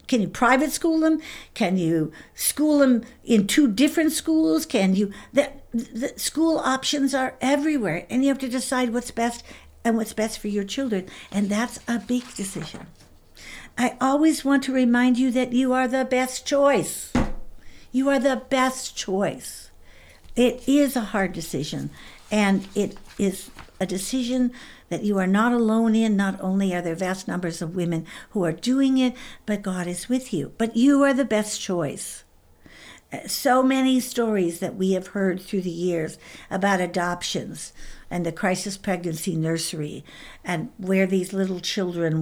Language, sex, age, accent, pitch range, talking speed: English, female, 60-79, American, 175-255 Hz, 165 wpm